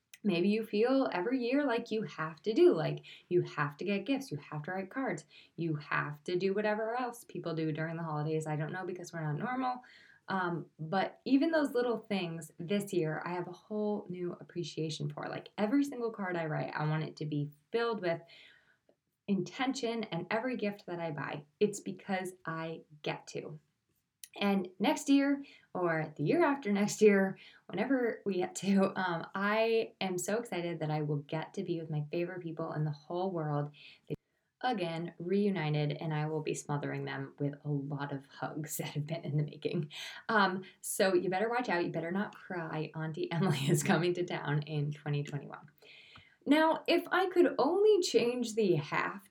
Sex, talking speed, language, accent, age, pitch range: female, 190 wpm, English, American, 20-39, 155-215 Hz